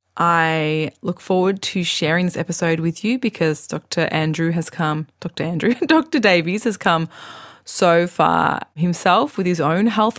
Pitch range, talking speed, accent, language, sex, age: 160-190 Hz, 160 wpm, Australian, English, female, 20-39